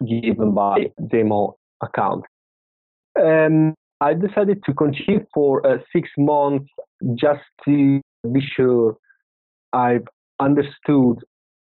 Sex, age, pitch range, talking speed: male, 30-49, 120-150 Hz, 100 wpm